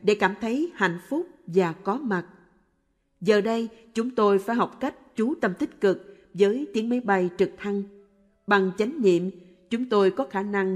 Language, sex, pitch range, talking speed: Vietnamese, female, 185-220 Hz, 185 wpm